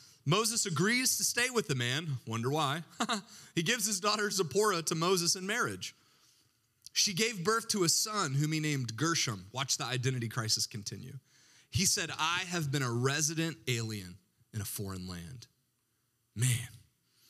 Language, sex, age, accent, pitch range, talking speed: English, male, 30-49, American, 120-190 Hz, 160 wpm